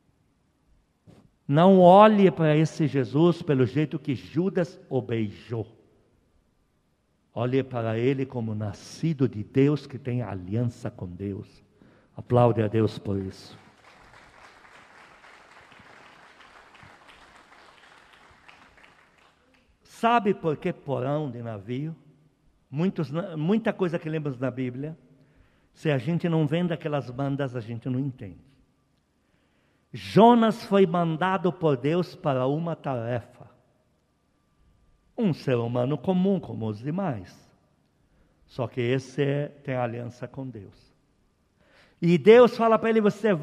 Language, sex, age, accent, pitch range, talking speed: Portuguese, male, 60-79, Brazilian, 120-195 Hz, 110 wpm